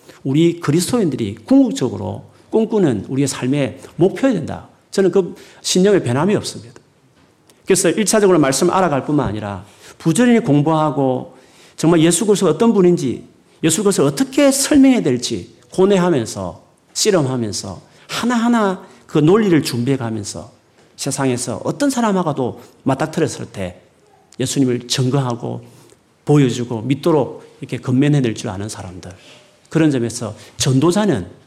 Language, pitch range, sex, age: Korean, 120-185 Hz, male, 40-59